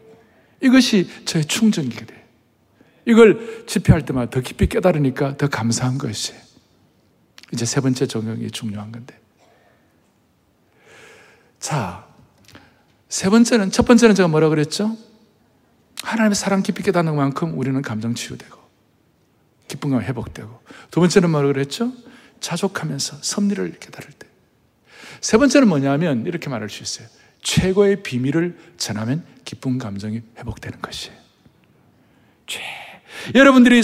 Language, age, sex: Korean, 60-79, male